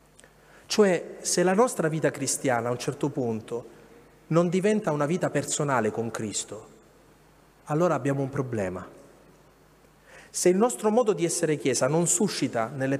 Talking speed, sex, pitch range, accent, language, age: 145 wpm, male, 145-195 Hz, native, Italian, 40-59